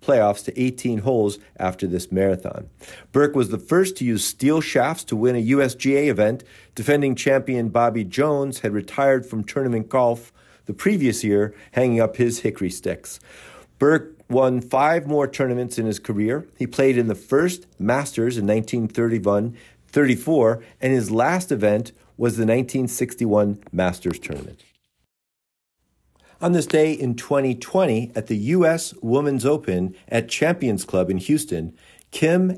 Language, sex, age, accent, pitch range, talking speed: English, male, 50-69, American, 105-140 Hz, 145 wpm